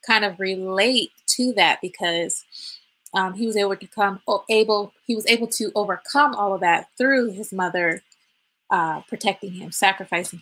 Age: 20-39